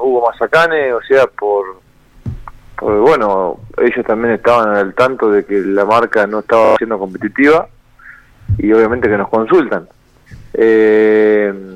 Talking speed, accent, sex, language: 135 wpm, Argentinian, male, Spanish